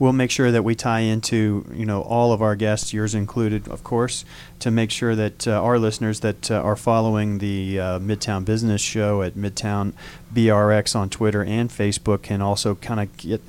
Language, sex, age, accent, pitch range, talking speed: English, male, 40-59, American, 105-120 Hz, 200 wpm